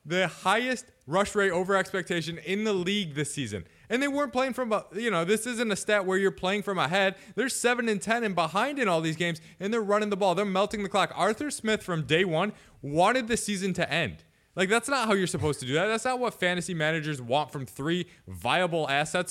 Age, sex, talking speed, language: 20-39, male, 230 wpm, English